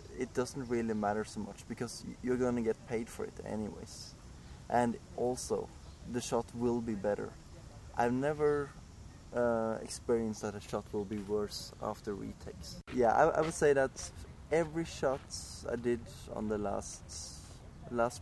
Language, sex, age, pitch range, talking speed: English, male, 20-39, 105-125 Hz, 160 wpm